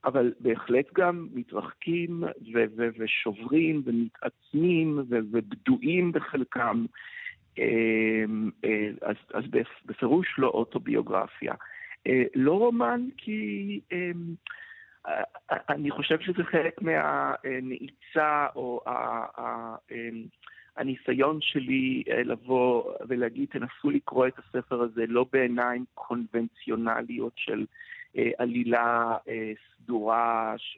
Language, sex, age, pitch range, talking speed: Hebrew, male, 50-69, 115-180 Hz, 80 wpm